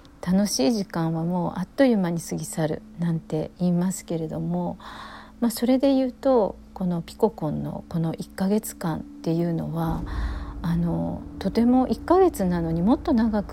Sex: female